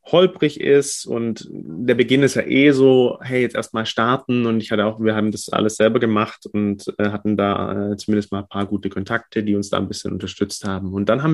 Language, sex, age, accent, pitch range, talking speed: German, male, 30-49, German, 110-135 Hz, 240 wpm